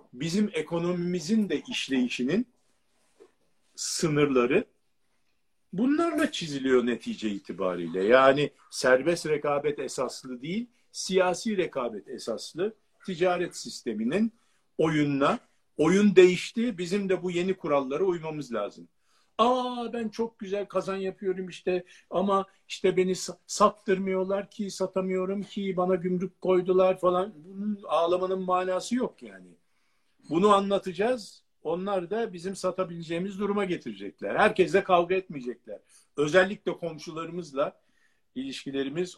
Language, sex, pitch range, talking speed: Turkish, male, 140-195 Hz, 100 wpm